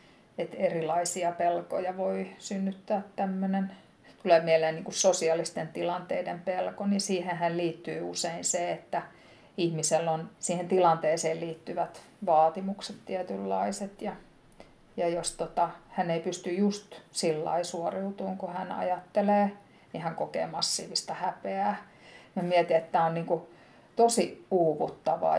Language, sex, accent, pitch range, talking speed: Finnish, female, native, 165-190 Hz, 125 wpm